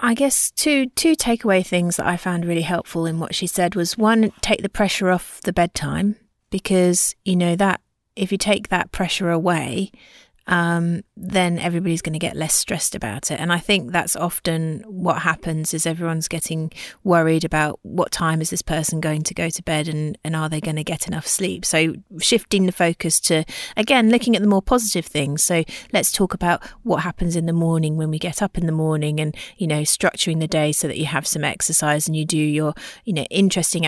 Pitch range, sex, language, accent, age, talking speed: 155-180 Hz, female, English, British, 30-49, 215 wpm